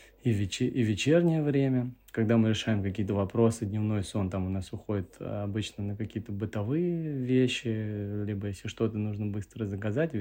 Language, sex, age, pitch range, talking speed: Russian, male, 20-39, 100-120 Hz, 145 wpm